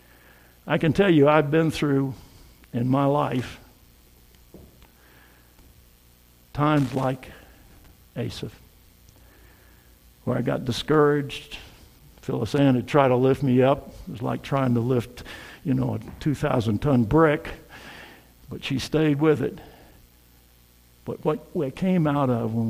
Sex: male